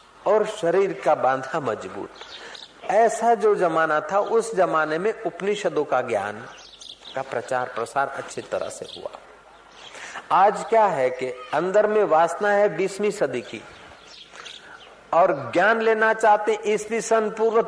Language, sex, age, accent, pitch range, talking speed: Hindi, male, 50-69, native, 150-215 Hz, 130 wpm